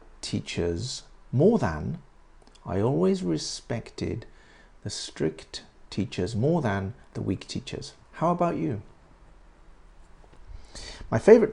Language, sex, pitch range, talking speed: English, male, 95-120 Hz, 100 wpm